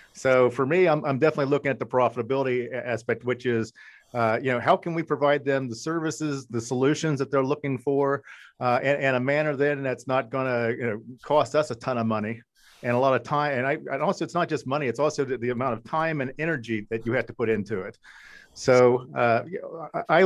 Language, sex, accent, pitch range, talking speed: English, male, American, 125-150 Hz, 230 wpm